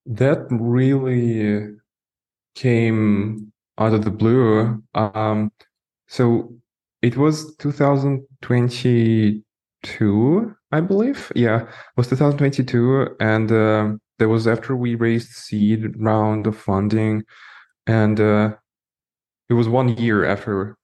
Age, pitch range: 20-39, 105-125 Hz